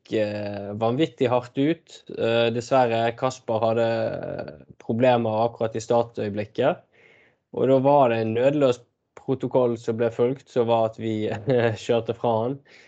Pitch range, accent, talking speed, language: 110-130 Hz, Swedish, 145 wpm, English